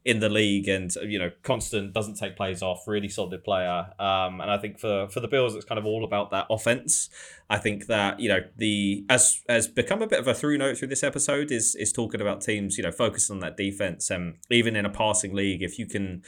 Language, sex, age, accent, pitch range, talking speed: English, male, 20-39, British, 100-115 Hz, 245 wpm